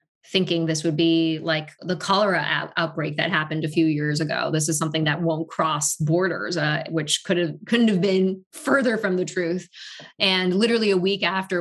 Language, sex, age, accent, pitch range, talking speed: English, female, 20-39, American, 160-185 Hz, 190 wpm